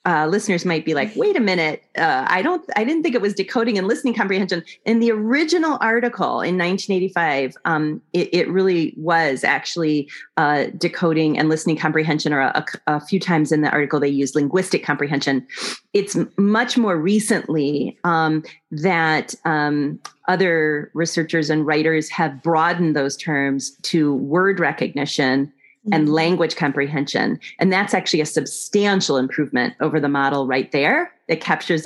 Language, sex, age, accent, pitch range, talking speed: English, female, 30-49, American, 150-190 Hz, 155 wpm